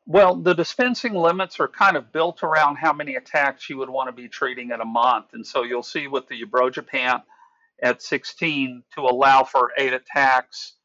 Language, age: English, 50-69